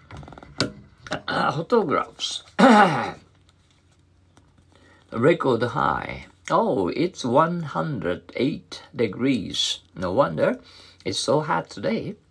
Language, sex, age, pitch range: Japanese, male, 60-79, 90-155 Hz